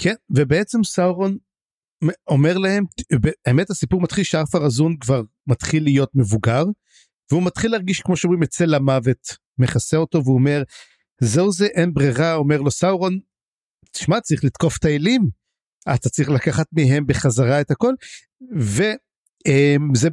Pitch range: 135-180 Hz